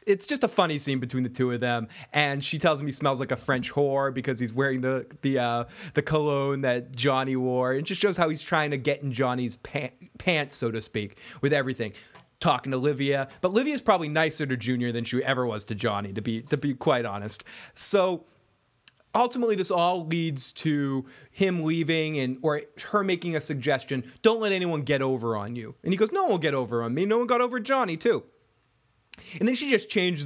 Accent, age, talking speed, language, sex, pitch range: American, 20-39, 220 wpm, English, male, 130-185 Hz